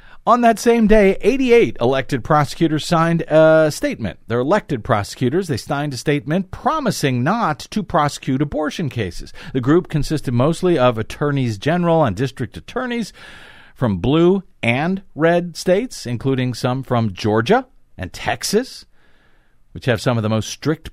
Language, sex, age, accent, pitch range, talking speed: English, male, 50-69, American, 125-185 Hz, 145 wpm